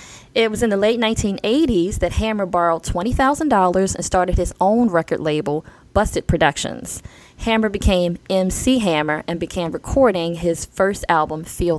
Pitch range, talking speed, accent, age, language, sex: 170-225 Hz, 150 wpm, American, 20-39, English, female